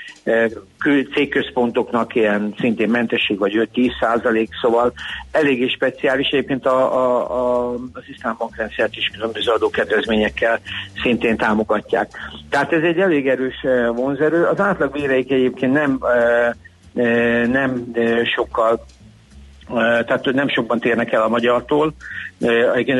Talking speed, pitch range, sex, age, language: 105 wpm, 115-135 Hz, male, 60-79, Hungarian